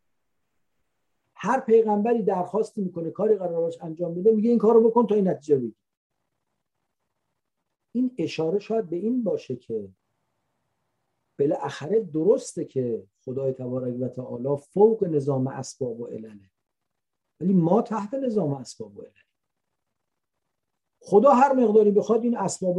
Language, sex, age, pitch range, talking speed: English, male, 50-69, 150-225 Hz, 125 wpm